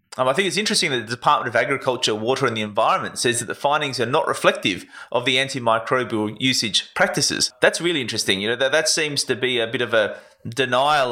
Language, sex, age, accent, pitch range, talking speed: English, male, 20-39, Australian, 115-140 Hz, 220 wpm